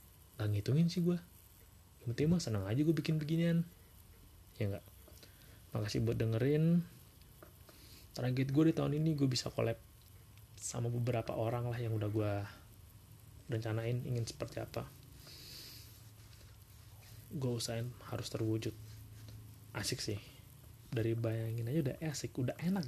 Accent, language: native, Indonesian